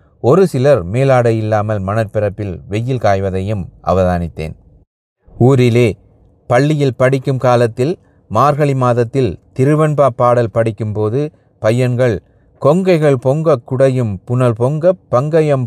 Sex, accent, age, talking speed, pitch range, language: male, native, 30-49, 90 wpm, 100-125 Hz, Tamil